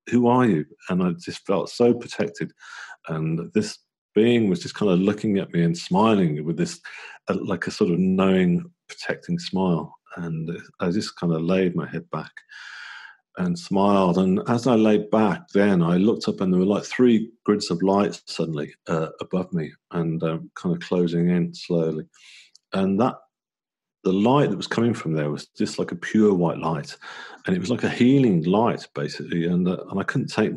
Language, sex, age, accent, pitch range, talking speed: English, male, 40-59, British, 85-105 Hz, 195 wpm